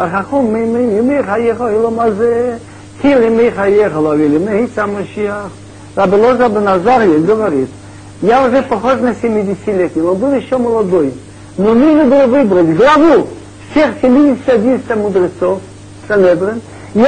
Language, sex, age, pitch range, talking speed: Russian, male, 50-69, 200-255 Hz, 120 wpm